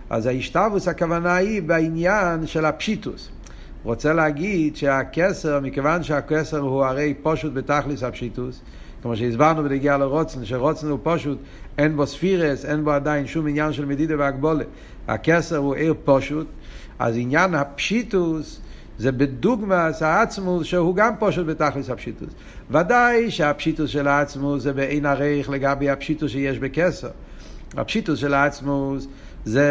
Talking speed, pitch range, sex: 135 wpm, 140-170 Hz, male